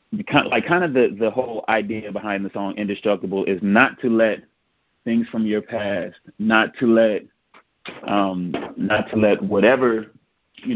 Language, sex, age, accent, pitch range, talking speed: English, male, 30-49, American, 100-115 Hz, 150 wpm